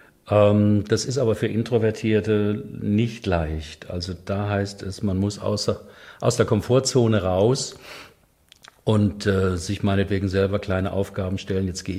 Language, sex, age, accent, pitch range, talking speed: German, male, 50-69, German, 90-105 Hz, 140 wpm